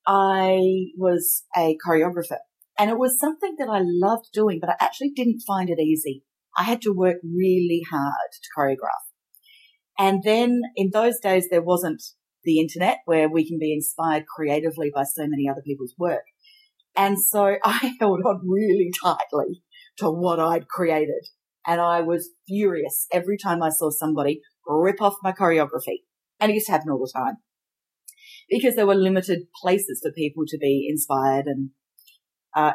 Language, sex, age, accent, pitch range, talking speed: English, female, 40-59, Australian, 160-225 Hz, 170 wpm